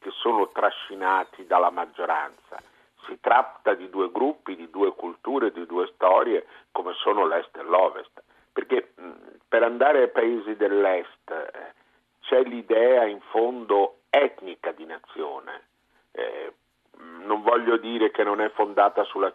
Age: 50-69